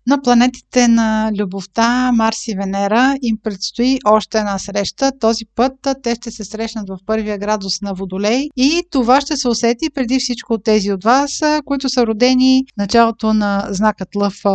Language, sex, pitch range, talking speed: Bulgarian, female, 210-250 Hz, 170 wpm